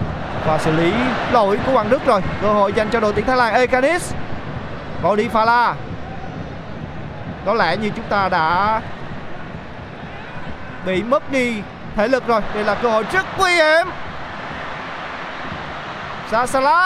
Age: 20-39